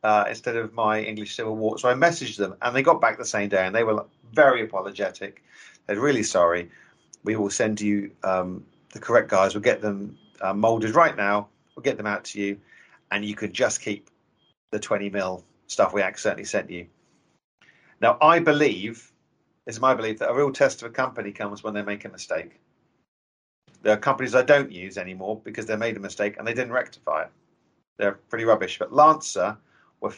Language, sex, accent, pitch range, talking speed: English, male, British, 100-125 Hz, 205 wpm